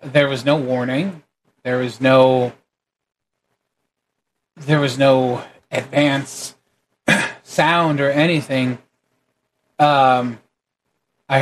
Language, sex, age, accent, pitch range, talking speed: English, male, 30-49, American, 125-140 Hz, 85 wpm